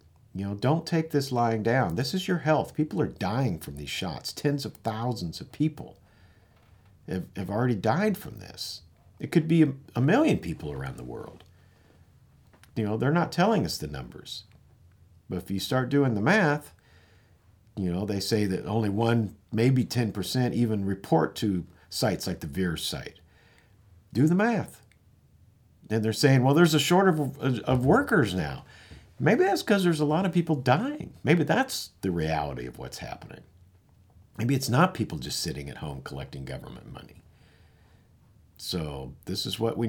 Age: 50-69